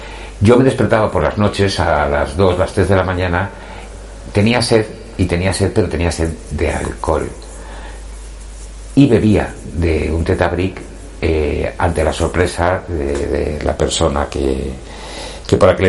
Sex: male